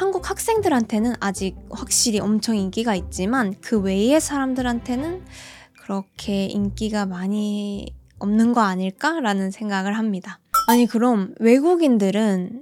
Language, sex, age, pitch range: Korean, female, 20-39, 195-280 Hz